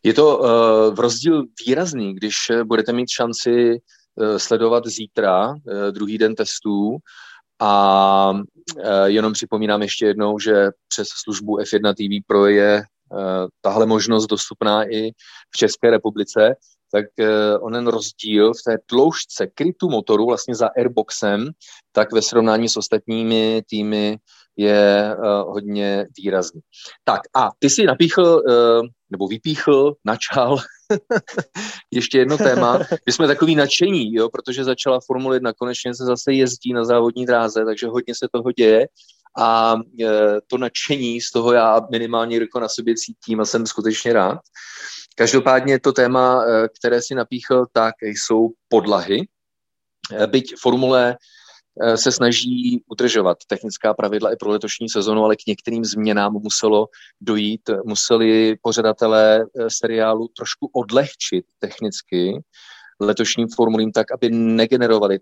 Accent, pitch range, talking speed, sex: native, 105-125 Hz, 130 wpm, male